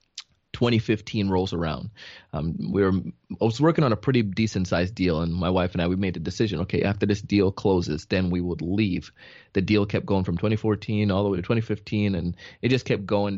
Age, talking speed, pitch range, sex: 30-49, 215 wpm, 95-115 Hz, male